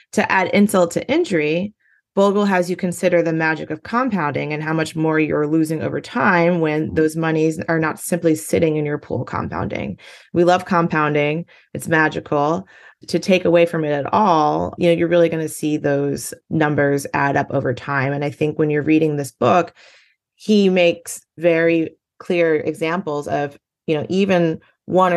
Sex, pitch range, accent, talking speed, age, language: female, 140-170 Hz, American, 180 wpm, 30-49, English